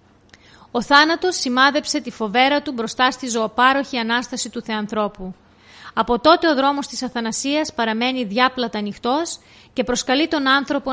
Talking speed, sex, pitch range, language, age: 135 wpm, female, 220-280 Hz, Greek, 30-49